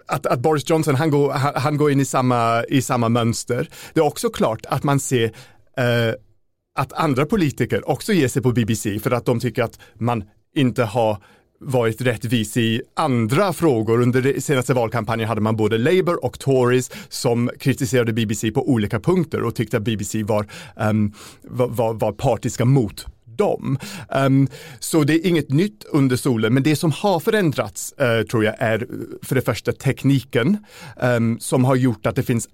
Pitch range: 110-135 Hz